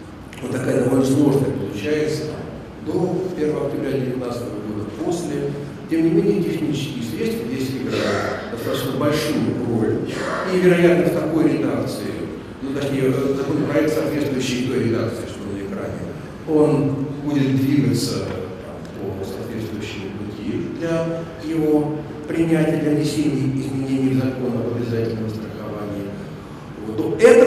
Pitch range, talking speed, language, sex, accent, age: 115-155 Hz, 120 wpm, Russian, male, native, 50-69